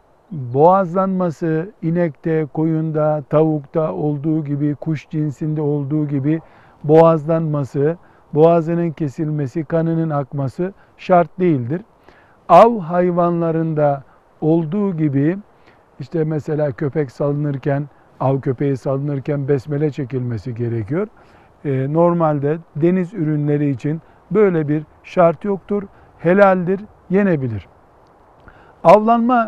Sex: male